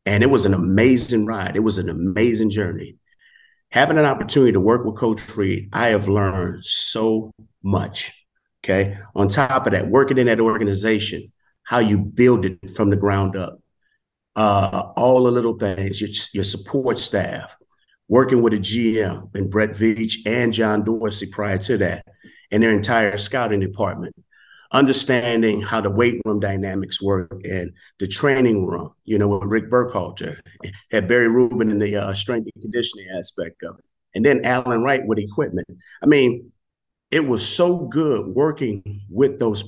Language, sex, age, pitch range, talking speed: English, male, 30-49, 100-125 Hz, 170 wpm